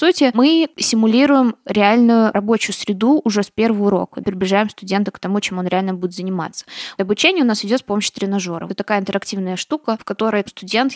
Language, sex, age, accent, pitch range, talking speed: Russian, female, 20-39, native, 195-235 Hz, 180 wpm